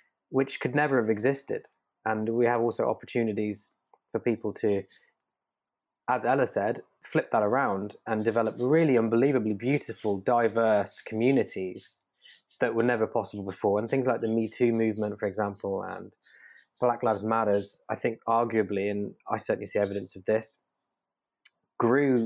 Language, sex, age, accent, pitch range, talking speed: English, male, 20-39, British, 100-120 Hz, 150 wpm